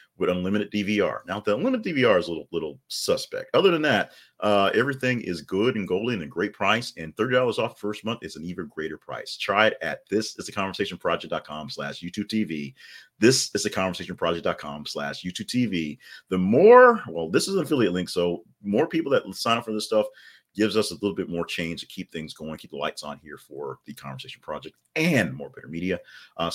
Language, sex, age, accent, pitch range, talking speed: English, male, 40-59, American, 80-110 Hz, 215 wpm